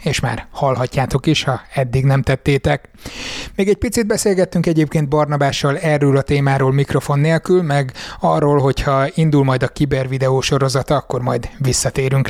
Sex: male